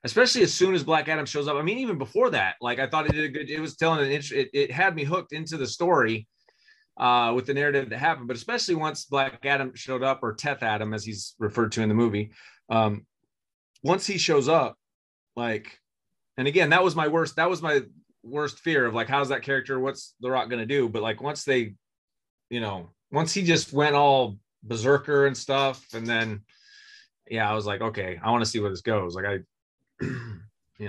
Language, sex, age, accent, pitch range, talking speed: English, male, 30-49, American, 105-155 Hz, 220 wpm